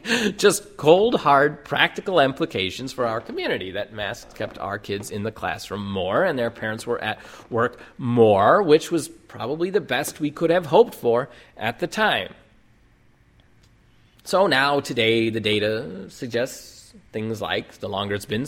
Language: English